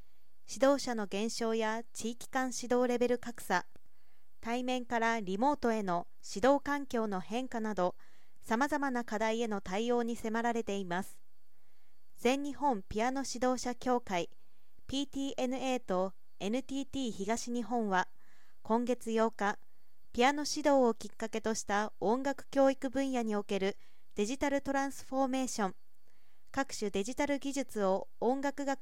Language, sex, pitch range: Japanese, female, 210-260 Hz